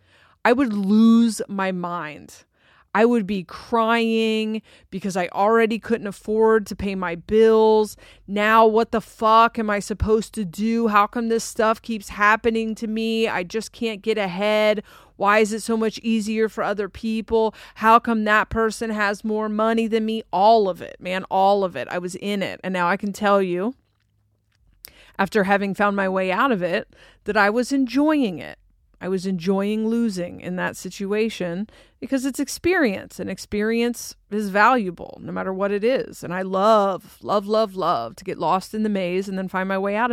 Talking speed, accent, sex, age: 185 wpm, American, female, 30-49